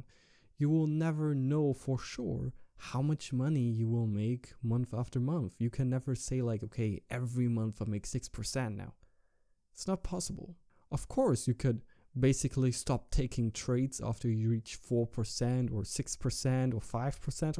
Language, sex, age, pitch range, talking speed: English, male, 20-39, 115-140 Hz, 155 wpm